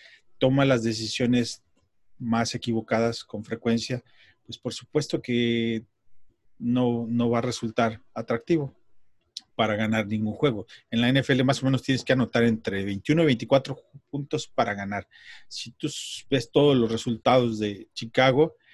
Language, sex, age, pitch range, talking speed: Spanish, male, 40-59, 110-130 Hz, 145 wpm